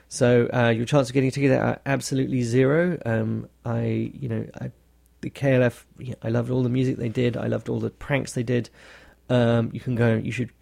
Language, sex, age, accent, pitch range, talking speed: English, male, 30-49, British, 115-130 Hz, 220 wpm